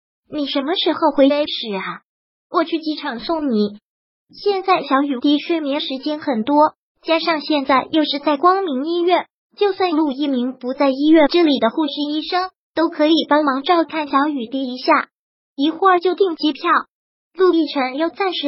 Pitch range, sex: 270-330 Hz, male